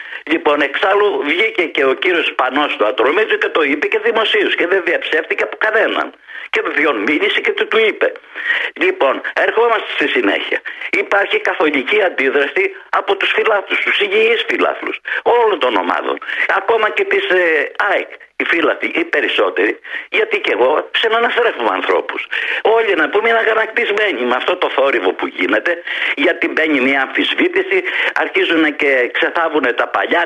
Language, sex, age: Greek, male, 50-69